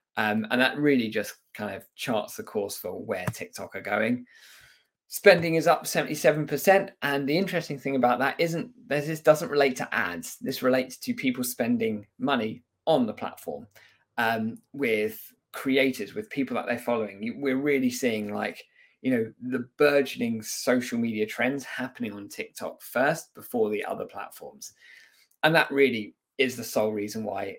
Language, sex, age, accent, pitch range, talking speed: English, male, 20-39, British, 120-195 Hz, 170 wpm